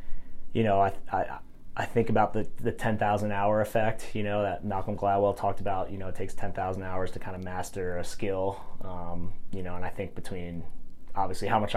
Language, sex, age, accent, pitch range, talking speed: English, male, 30-49, American, 90-105 Hz, 220 wpm